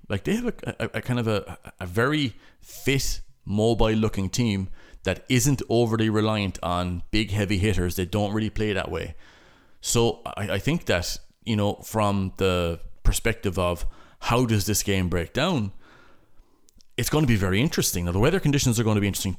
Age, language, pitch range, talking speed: 30-49, English, 90-110 Hz, 190 wpm